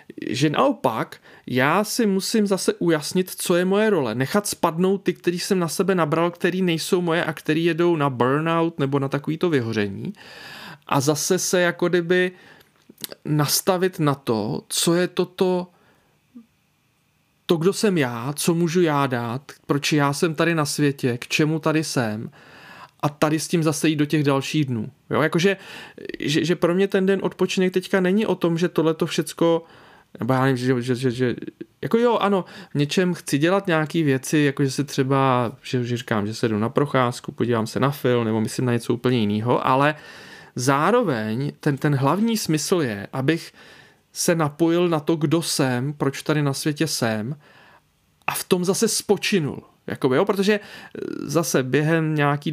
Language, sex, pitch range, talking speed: Czech, male, 140-180 Hz, 175 wpm